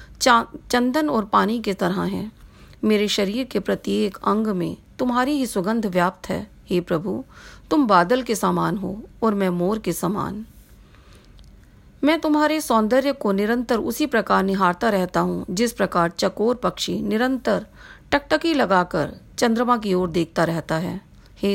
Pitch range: 185-235 Hz